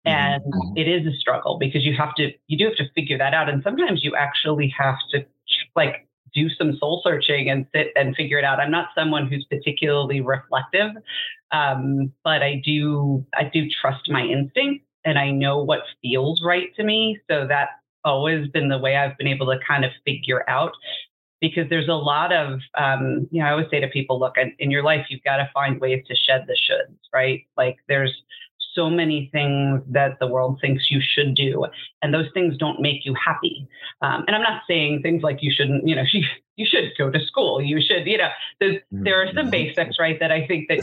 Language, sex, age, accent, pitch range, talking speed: English, female, 30-49, American, 135-160 Hz, 215 wpm